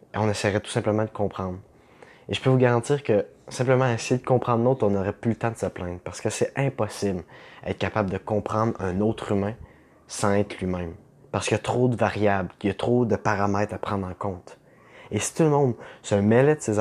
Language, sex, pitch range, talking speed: French, male, 100-120 Hz, 230 wpm